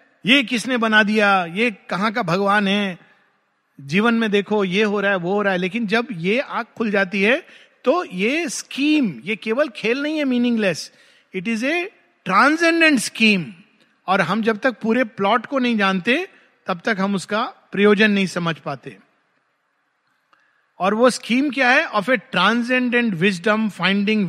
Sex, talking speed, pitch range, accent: male, 170 wpm, 190-245 Hz, native